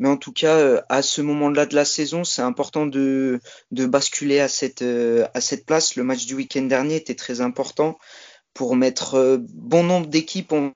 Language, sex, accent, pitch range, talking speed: French, male, French, 135-155 Hz, 190 wpm